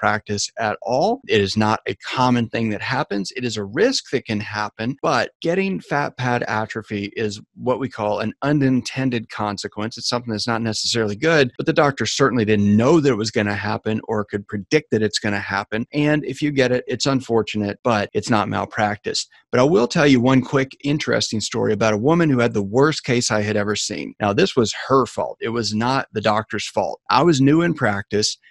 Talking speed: 220 wpm